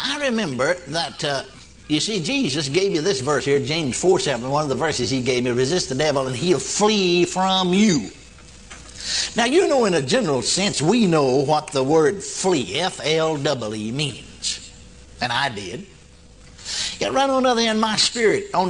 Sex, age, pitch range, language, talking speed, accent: male, 60-79, 125-190 Hz, English, 175 wpm, American